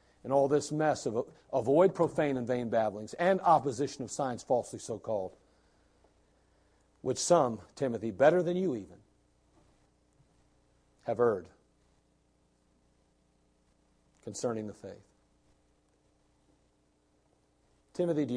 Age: 50-69